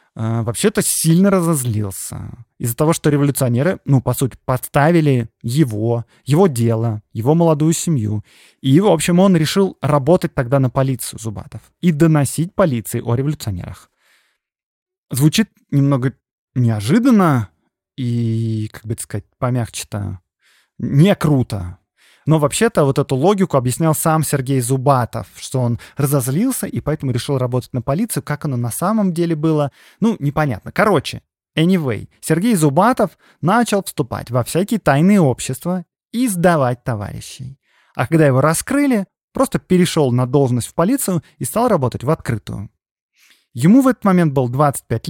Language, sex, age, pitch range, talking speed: Russian, male, 20-39, 120-170 Hz, 135 wpm